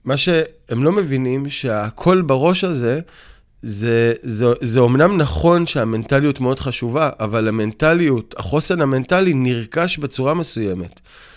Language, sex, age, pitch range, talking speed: Hebrew, male, 30-49, 125-160 Hz, 120 wpm